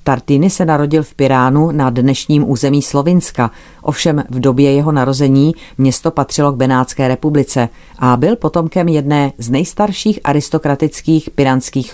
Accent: native